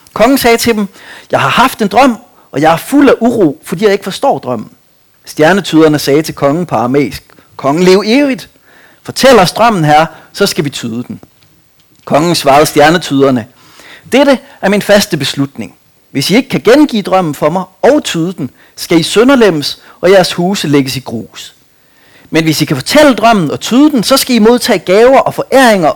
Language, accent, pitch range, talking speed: Danish, native, 145-225 Hz, 190 wpm